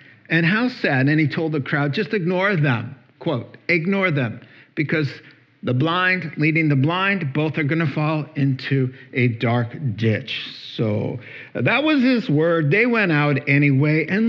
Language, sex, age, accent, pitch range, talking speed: English, male, 50-69, American, 130-165 Hz, 165 wpm